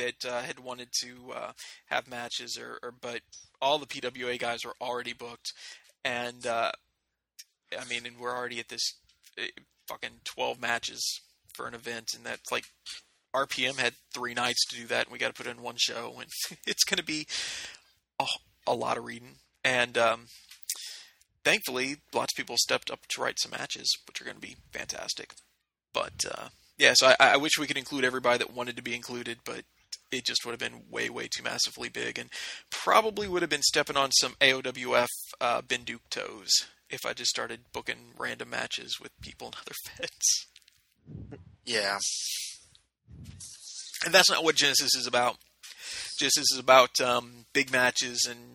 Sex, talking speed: male, 180 wpm